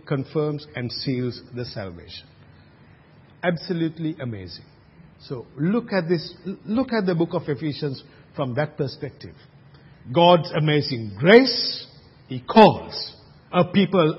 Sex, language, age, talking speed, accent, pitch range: male, English, 50-69, 115 wpm, Indian, 130-190 Hz